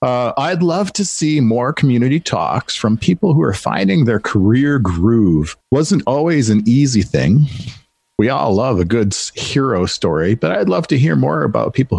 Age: 50-69